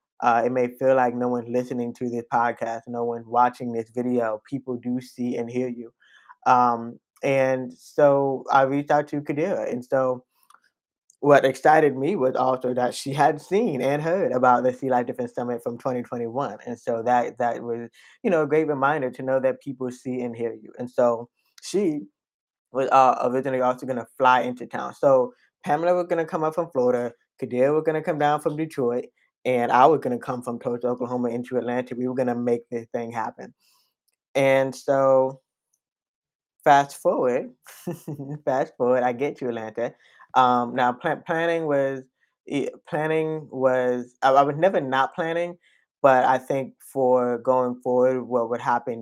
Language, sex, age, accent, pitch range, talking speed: English, male, 20-39, American, 125-140 Hz, 180 wpm